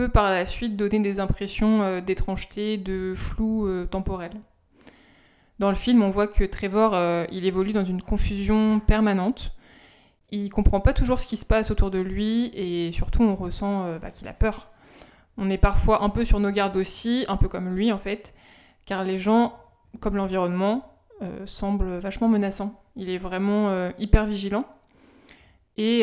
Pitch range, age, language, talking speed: 190-220 Hz, 20-39, French, 180 wpm